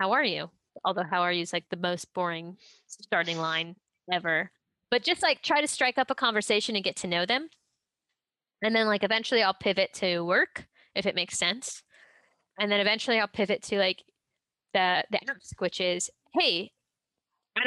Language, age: English, 20-39